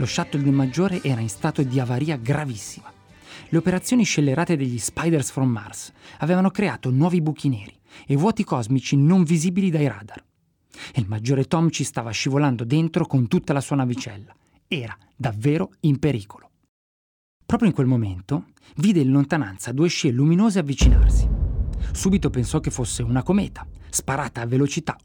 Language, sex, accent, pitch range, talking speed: Italian, male, native, 125-170 Hz, 160 wpm